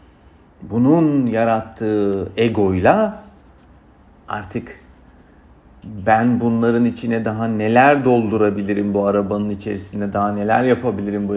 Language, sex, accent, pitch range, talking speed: Turkish, male, native, 95-115 Hz, 90 wpm